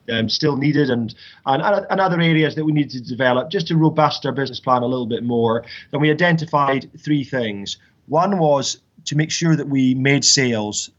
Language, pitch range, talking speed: English, 120-145 Hz, 200 wpm